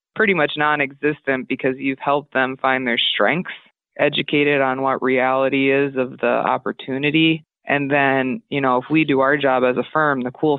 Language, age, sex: English, 20-39, female